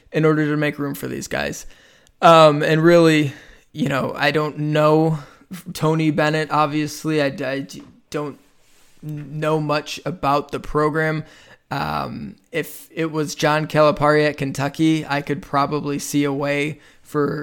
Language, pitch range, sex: English, 140-150 Hz, male